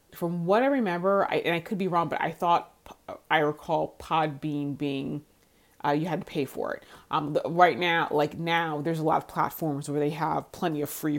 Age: 30-49